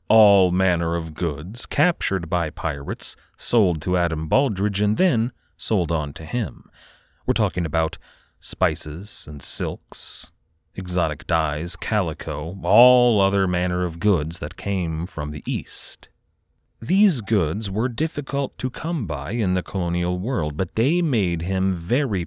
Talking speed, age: 140 wpm, 30-49